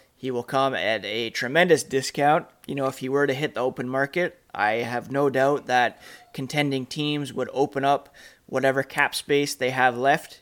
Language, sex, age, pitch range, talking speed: English, male, 20-39, 125-140 Hz, 190 wpm